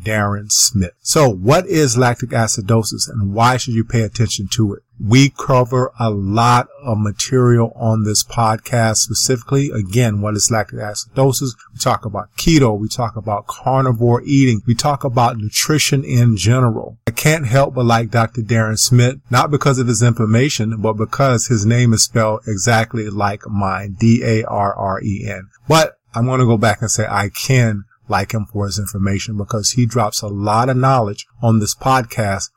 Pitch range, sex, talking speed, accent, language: 110-125 Hz, male, 170 wpm, American, English